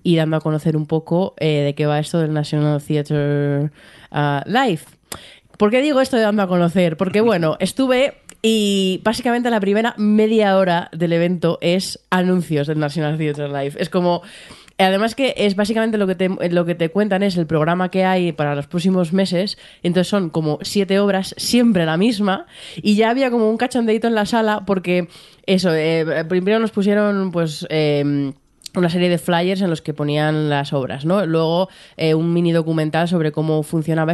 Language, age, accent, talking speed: Spanish, 20-39, Spanish, 190 wpm